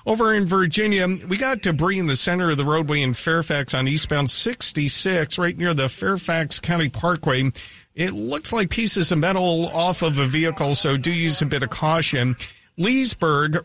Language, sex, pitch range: English, male, 150-190 Hz